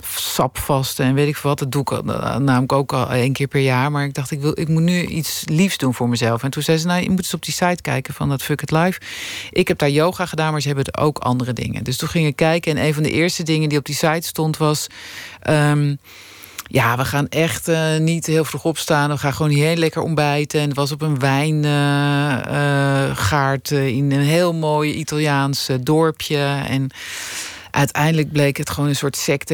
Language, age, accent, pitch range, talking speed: Dutch, 40-59, Dutch, 135-155 Hz, 230 wpm